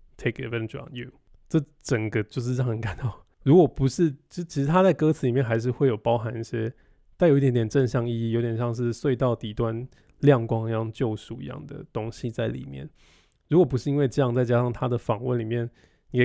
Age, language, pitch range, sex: 20-39, Chinese, 115-135 Hz, male